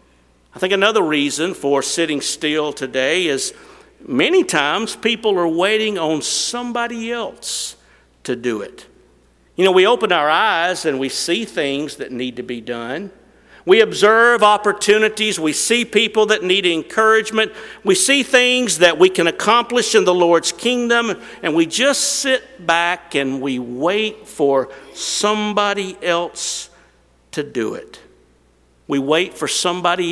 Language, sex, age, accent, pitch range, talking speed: English, male, 50-69, American, 145-215 Hz, 145 wpm